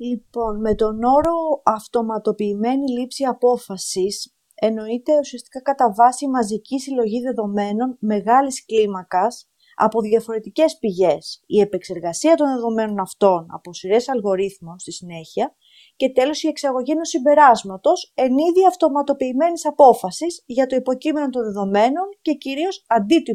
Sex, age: female, 30-49